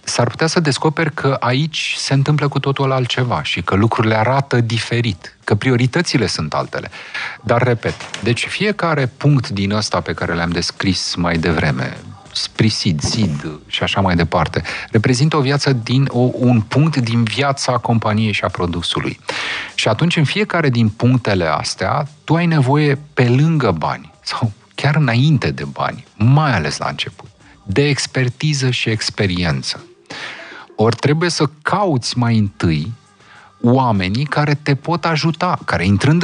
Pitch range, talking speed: 105-145 Hz, 145 wpm